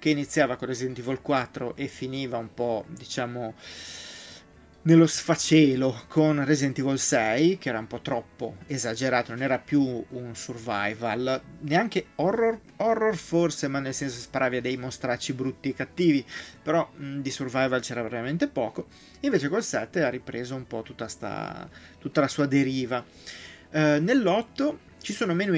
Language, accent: Italian, native